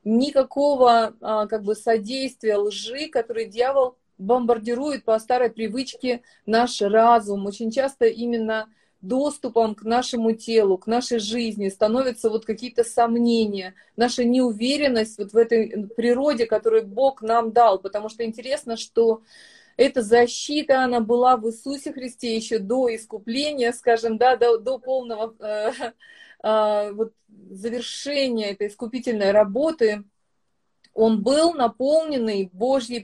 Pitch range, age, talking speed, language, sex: 220-255 Hz, 30-49, 115 wpm, Russian, female